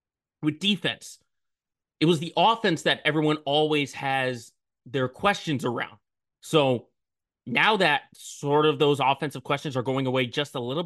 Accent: American